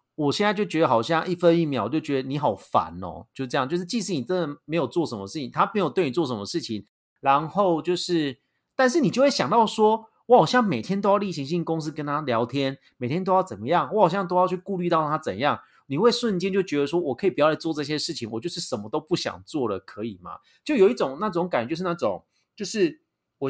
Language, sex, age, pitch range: Chinese, male, 30-49, 135-195 Hz